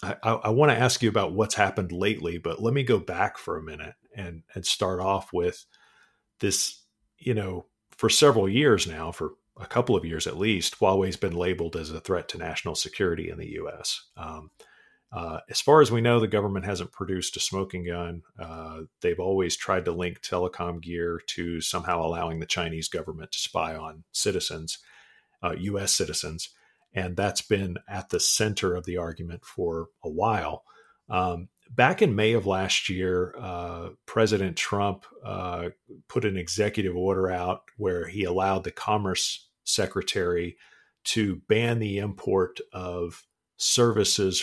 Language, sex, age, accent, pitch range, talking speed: English, male, 40-59, American, 85-105 Hz, 165 wpm